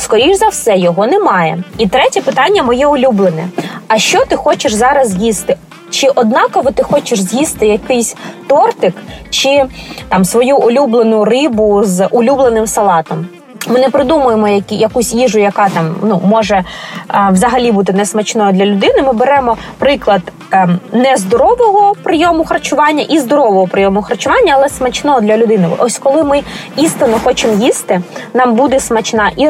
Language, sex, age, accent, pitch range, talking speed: Ukrainian, female, 20-39, native, 210-270 Hz, 140 wpm